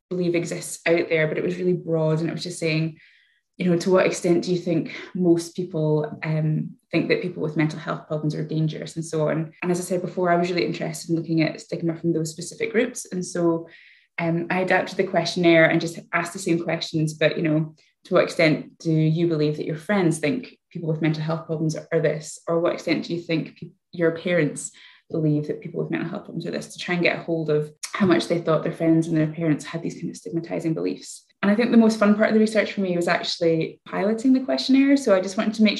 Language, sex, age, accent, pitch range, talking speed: English, female, 20-39, British, 160-185 Hz, 255 wpm